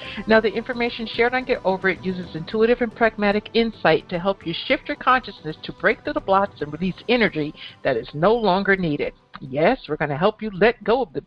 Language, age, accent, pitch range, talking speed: English, 60-79, American, 160-220 Hz, 225 wpm